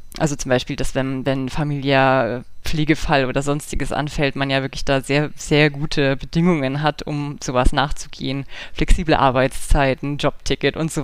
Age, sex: 20-39, female